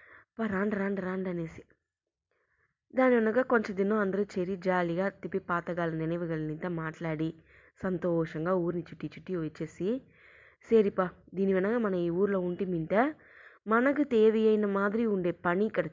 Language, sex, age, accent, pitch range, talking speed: English, female, 20-39, Indian, 165-215 Hz, 120 wpm